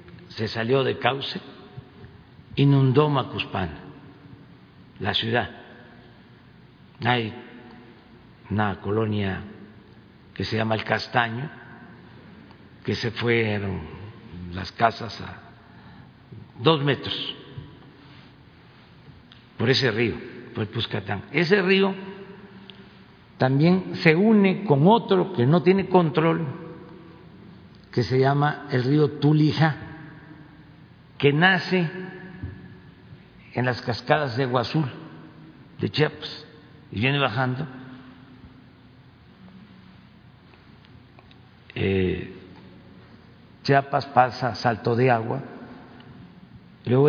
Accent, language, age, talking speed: Mexican, Spanish, 50-69, 85 wpm